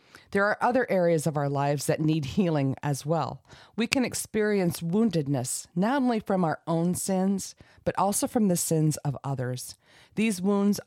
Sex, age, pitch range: female, 40-59, 145-195 Hz